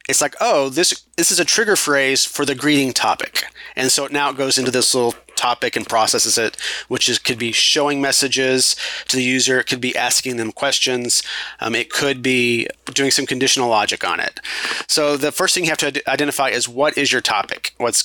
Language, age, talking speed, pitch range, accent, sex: English, 30-49, 215 wpm, 125-145 Hz, American, male